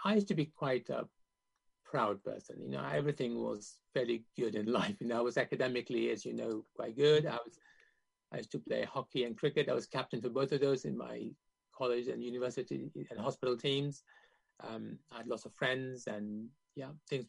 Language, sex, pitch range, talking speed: English, male, 125-170 Hz, 205 wpm